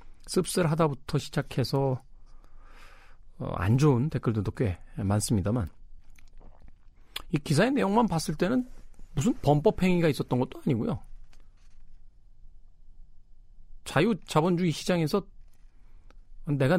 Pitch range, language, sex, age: 95-145 Hz, Korean, male, 40-59